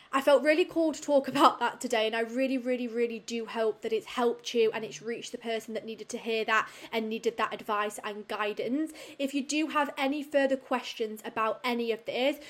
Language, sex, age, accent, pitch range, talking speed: English, female, 20-39, British, 220-255 Hz, 225 wpm